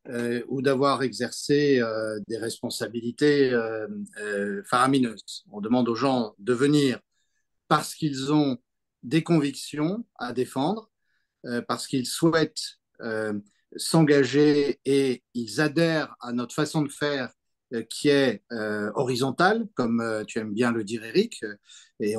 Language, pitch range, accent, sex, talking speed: French, 120-155 Hz, French, male, 140 wpm